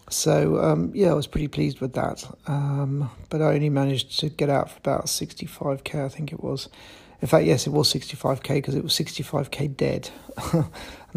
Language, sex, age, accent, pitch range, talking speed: English, male, 40-59, British, 130-145 Hz, 195 wpm